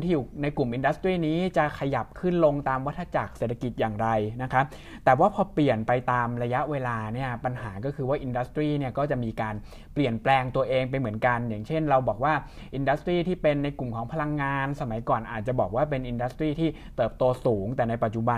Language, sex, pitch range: Thai, male, 120-150 Hz